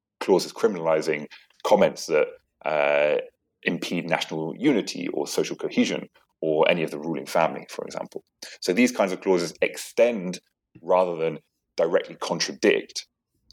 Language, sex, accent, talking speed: English, male, British, 135 wpm